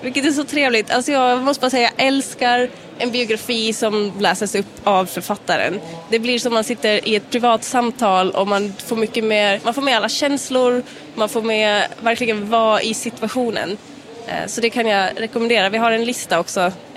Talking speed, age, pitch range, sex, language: 190 wpm, 20-39, 195-235 Hz, female, English